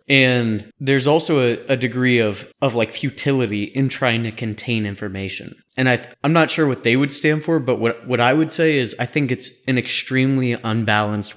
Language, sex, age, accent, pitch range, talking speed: English, male, 20-39, American, 105-130 Hz, 205 wpm